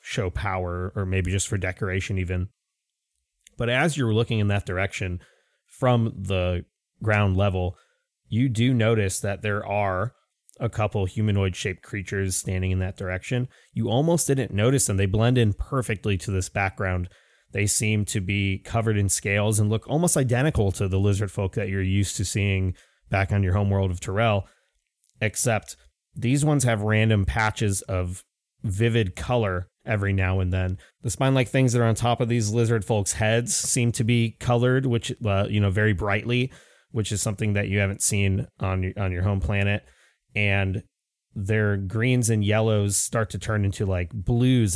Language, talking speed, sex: English, 175 wpm, male